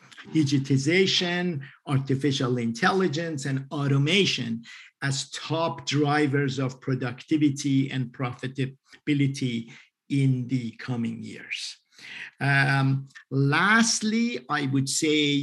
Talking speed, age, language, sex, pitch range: 80 wpm, 50-69, English, male, 135-165 Hz